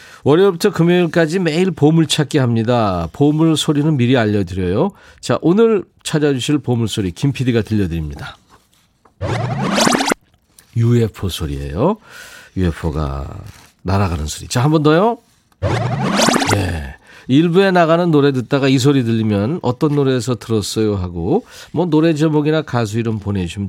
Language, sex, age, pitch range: Korean, male, 40-59, 105-155 Hz